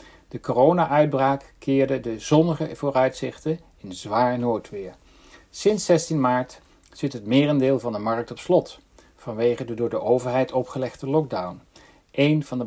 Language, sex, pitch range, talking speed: Dutch, male, 115-145 Hz, 140 wpm